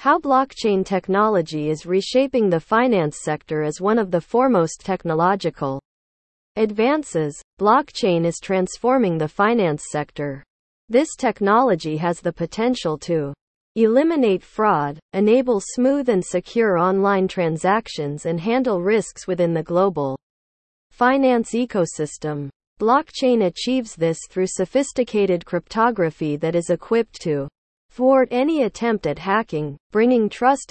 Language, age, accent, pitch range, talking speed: English, 40-59, American, 160-230 Hz, 115 wpm